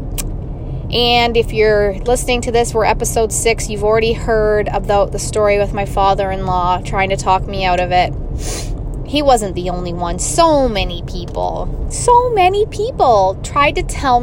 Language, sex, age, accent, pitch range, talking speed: English, female, 20-39, American, 205-290 Hz, 165 wpm